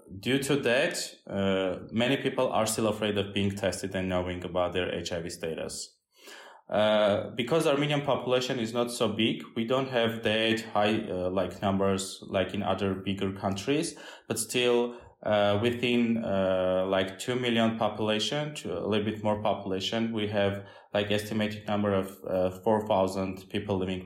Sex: male